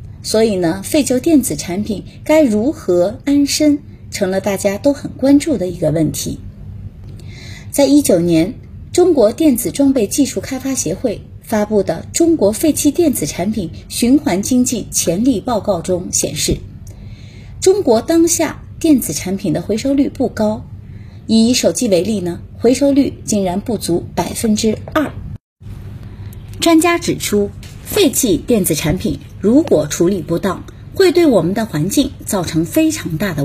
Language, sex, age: Chinese, female, 30-49